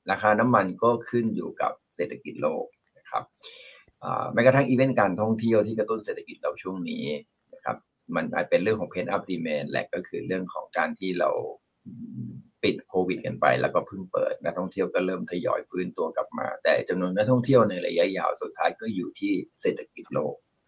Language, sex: Thai, male